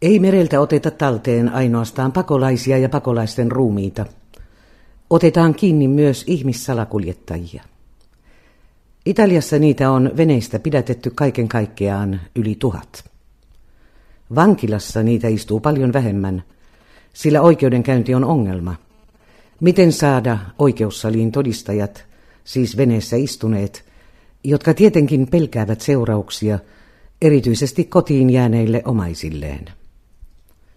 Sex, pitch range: female, 105-145 Hz